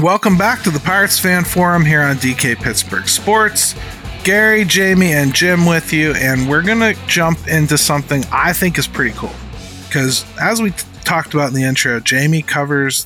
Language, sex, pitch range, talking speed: English, male, 135-175 Hz, 185 wpm